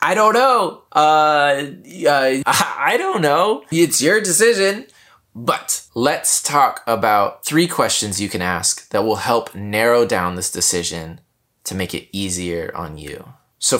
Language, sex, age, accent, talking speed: English, male, 20-39, American, 150 wpm